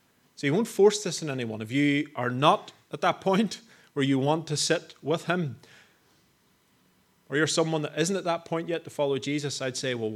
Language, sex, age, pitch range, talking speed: English, male, 30-49, 130-160 Hz, 215 wpm